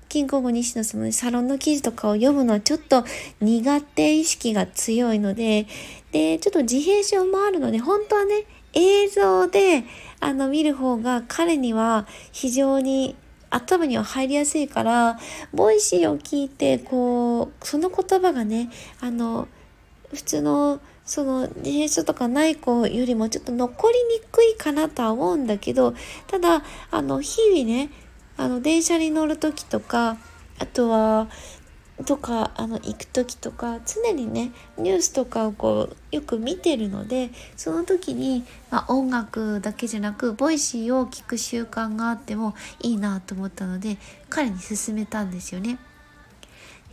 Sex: female